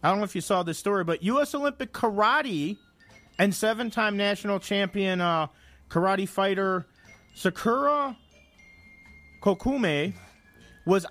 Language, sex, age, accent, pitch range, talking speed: English, male, 40-59, American, 175-240 Hz, 120 wpm